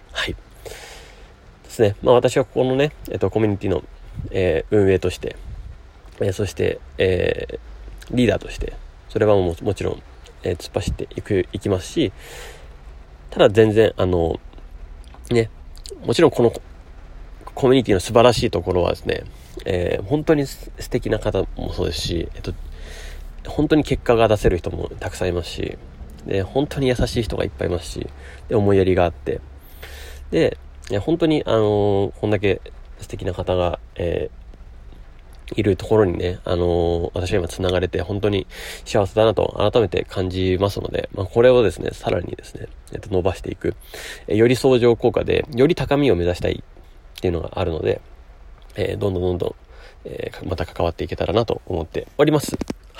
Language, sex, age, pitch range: Japanese, male, 30-49, 80-115 Hz